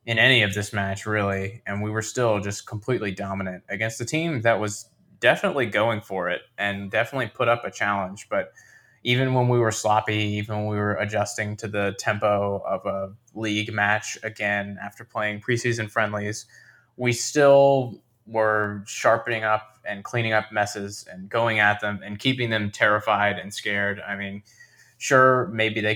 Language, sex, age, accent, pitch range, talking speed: English, male, 20-39, American, 105-120 Hz, 175 wpm